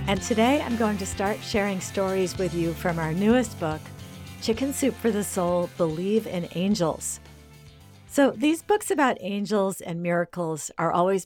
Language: English